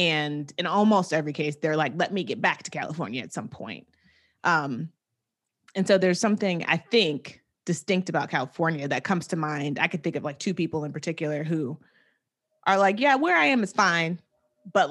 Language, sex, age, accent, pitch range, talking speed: English, female, 30-49, American, 155-190 Hz, 195 wpm